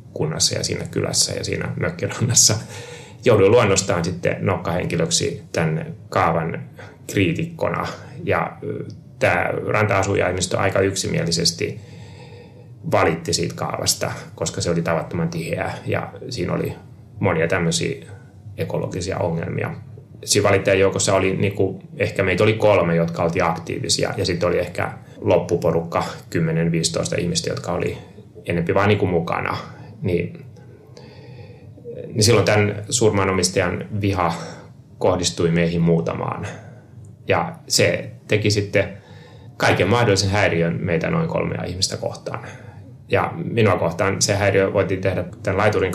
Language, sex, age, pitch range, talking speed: Finnish, male, 30-49, 85-105 Hz, 120 wpm